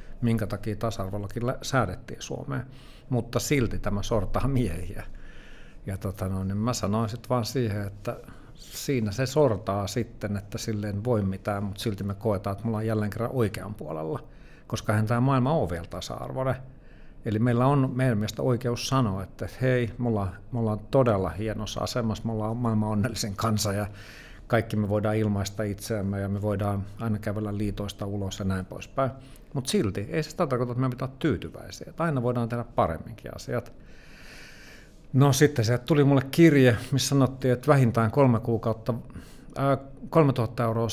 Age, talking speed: 60-79, 165 wpm